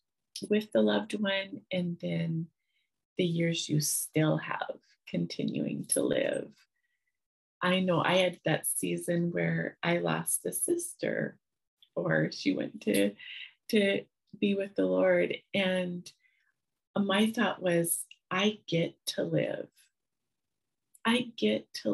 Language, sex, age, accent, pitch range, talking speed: English, female, 30-49, American, 160-210 Hz, 125 wpm